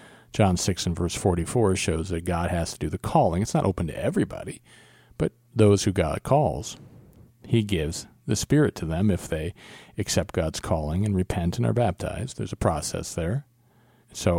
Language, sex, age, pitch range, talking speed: English, male, 40-59, 90-115 Hz, 185 wpm